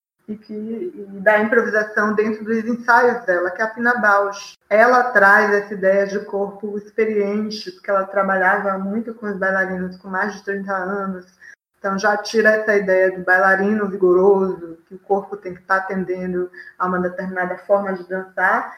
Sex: female